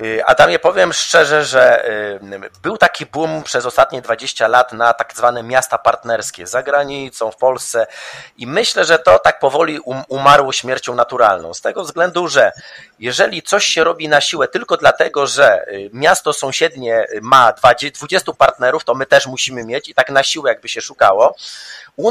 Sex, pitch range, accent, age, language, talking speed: male, 125-160 Hz, native, 30-49, Polish, 165 wpm